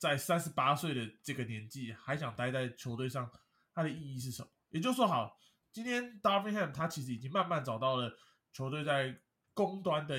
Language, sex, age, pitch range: Chinese, male, 20-39, 125-170 Hz